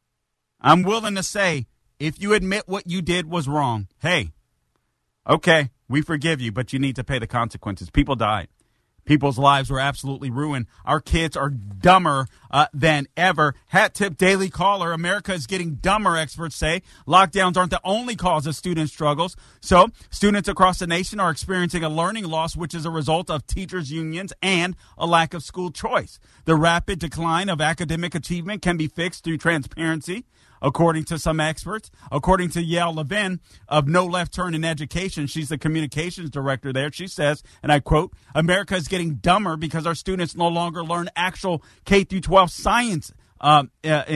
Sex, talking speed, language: male, 180 wpm, English